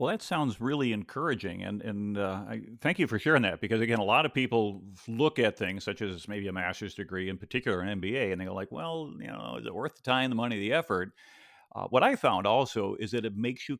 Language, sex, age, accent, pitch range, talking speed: English, male, 50-69, American, 100-125 Hz, 250 wpm